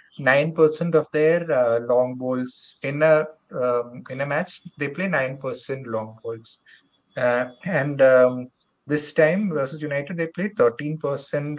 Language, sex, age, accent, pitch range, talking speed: English, male, 20-39, Indian, 125-155 Hz, 155 wpm